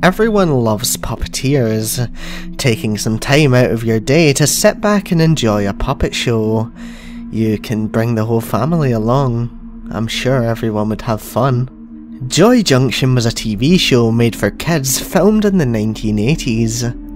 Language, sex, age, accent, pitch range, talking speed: English, male, 20-39, British, 110-135 Hz, 155 wpm